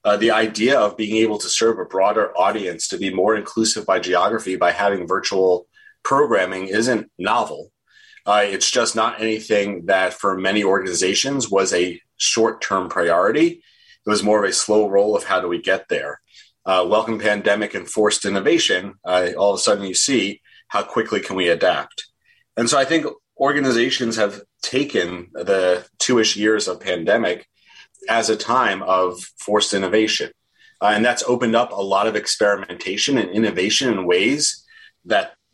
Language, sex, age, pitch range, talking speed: English, male, 30-49, 100-125 Hz, 165 wpm